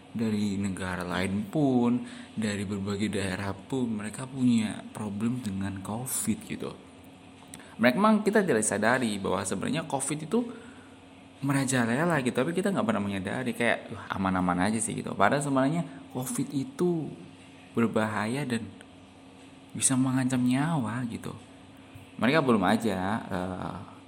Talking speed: 120 wpm